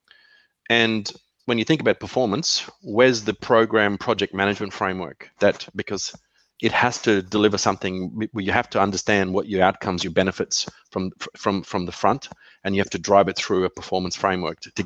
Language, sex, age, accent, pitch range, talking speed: English, male, 30-49, Australian, 95-120 Hz, 180 wpm